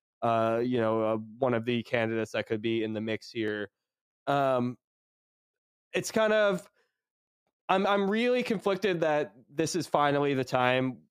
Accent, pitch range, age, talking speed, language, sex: American, 115-145 Hz, 20-39, 155 wpm, English, male